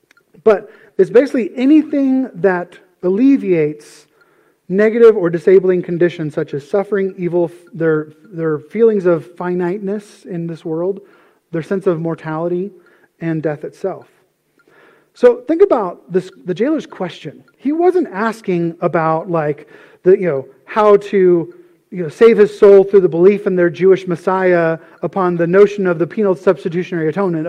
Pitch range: 170-270 Hz